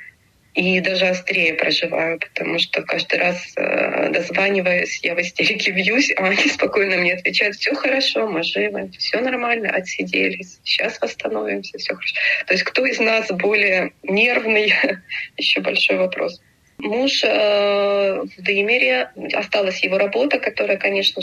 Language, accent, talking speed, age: Russian, native, 135 wpm, 20-39